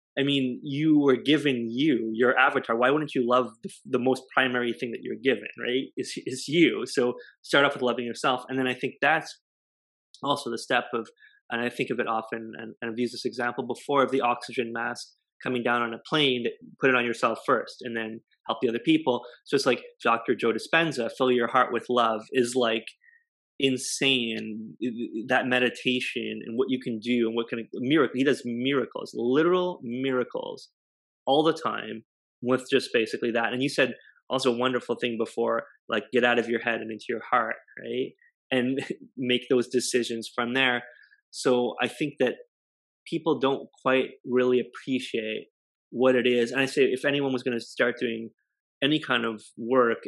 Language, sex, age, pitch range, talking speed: English, male, 20-39, 115-135 Hz, 195 wpm